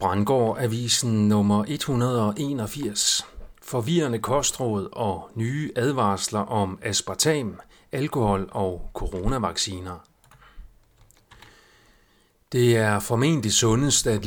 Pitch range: 100-135 Hz